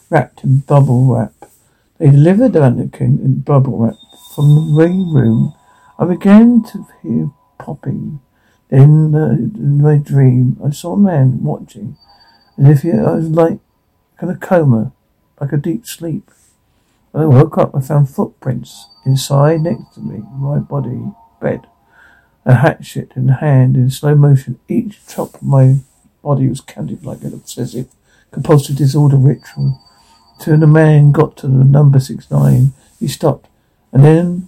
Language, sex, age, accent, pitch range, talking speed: English, male, 60-79, British, 125-150 Hz, 160 wpm